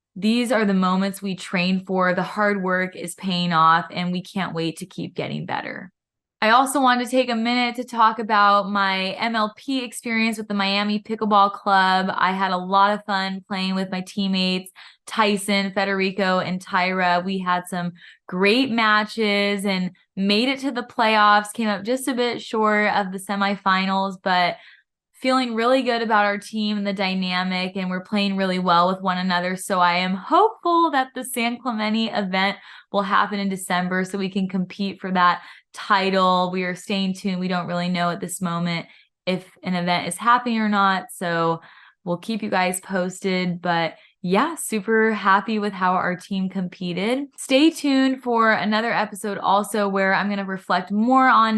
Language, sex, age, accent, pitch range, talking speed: English, female, 20-39, American, 185-225 Hz, 180 wpm